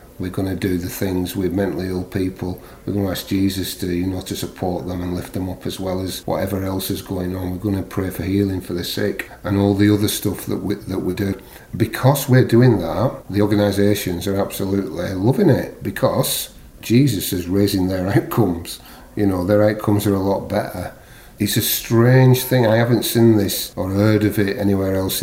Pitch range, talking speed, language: 90-105 Hz, 215 wpm, English